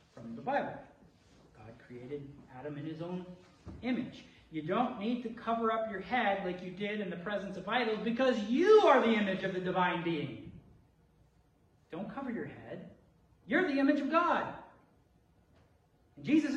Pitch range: 180-250 Hz